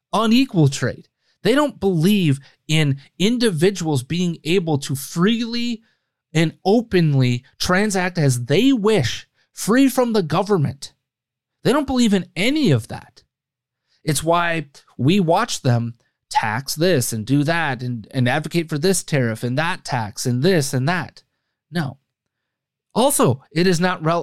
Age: 30-49